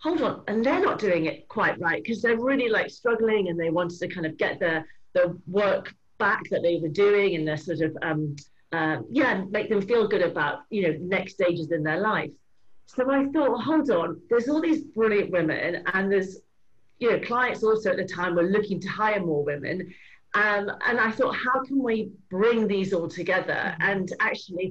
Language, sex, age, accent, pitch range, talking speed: English, female, 40-59, British, 165-215 Hz, 210 wpm